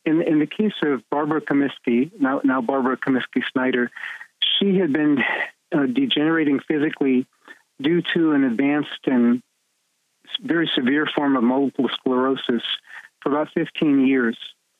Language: English